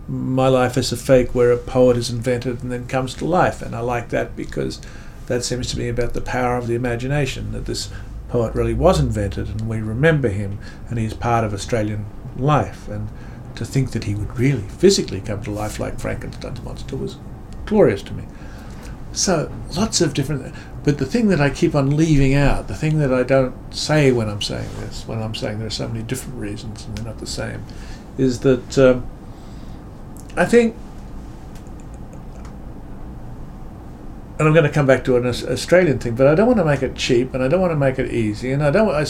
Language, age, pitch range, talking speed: English, 50-69, 110-130 Hz, 210 wpm